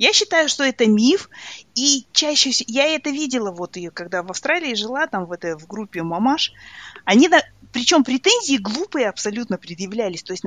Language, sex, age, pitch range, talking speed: Russian, female, 20-39, 195-270 Hz, 185 wpm